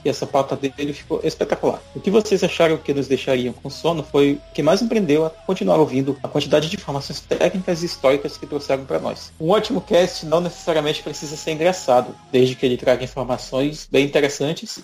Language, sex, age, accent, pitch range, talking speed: Portuguese, male, 40-59, Brazilian, 135-180 Hz, 200 wpm